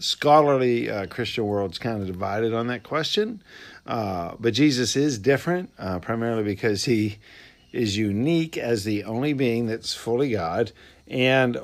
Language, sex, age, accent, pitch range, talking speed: English, male, 50-69, American, 100-130 Hz, 150 wpm